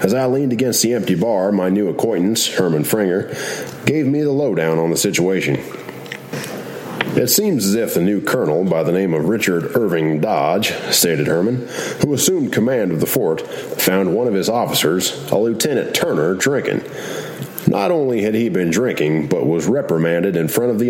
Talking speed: 180 wpm